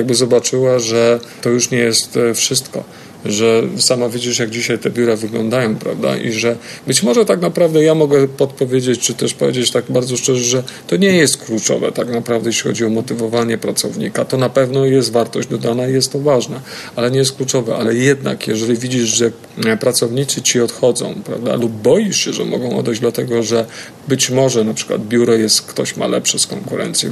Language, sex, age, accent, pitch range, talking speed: Polish, male, 40-59, native, 115-135 Hz, 190 wpm